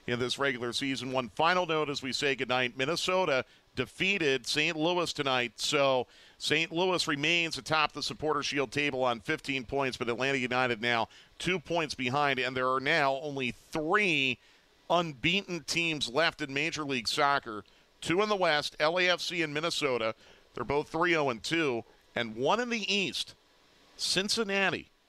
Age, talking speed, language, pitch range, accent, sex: 50-69, 160 wpm, English, 125-160 Hz, American, male